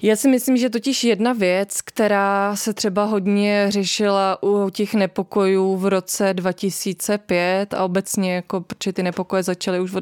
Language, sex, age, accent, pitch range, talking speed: Czech, female, 20-39, native, 190-210 Hz, 160 wpm